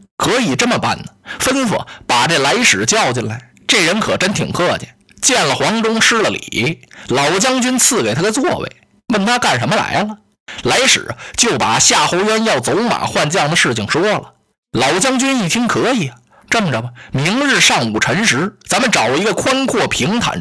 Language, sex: Chinese, male